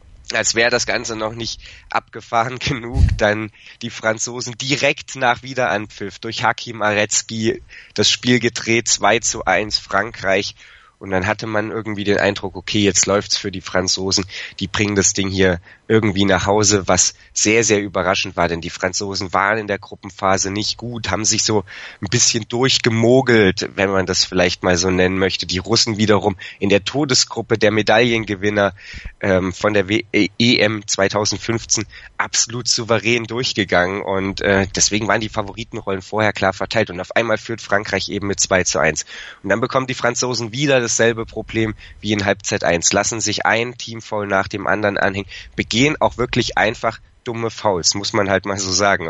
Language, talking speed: German, 175 wpm